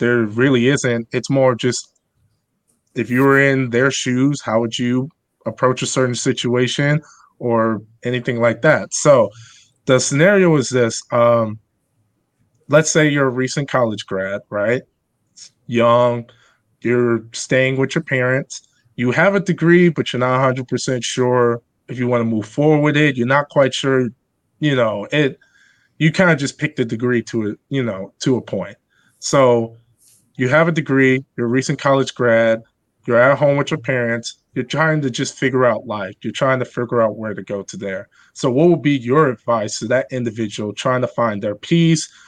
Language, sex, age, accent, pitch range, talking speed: English, male, 20-39, American, 115-145 Hz, 185 wpm